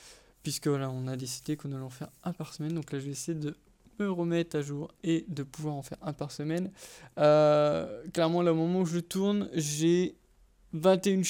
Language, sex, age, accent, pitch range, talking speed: English, male, 20-39, French, 150-180 Hz, 210 wpm